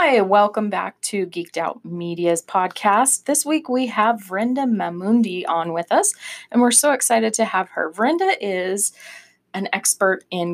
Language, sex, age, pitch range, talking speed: English, female, 20-39, 180-215 Hz, 165 wpm